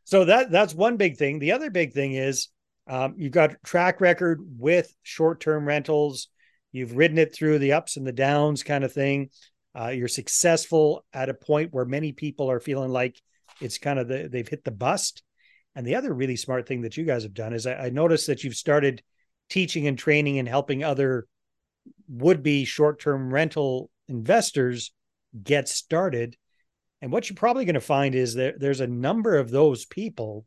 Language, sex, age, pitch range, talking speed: English, male, 40-59, 125-155 Hz, 190 wpm